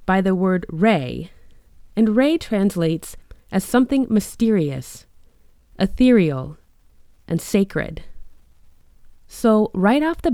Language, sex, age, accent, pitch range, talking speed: English, female, 20-39, American, 145-205 Hz, 100 wpm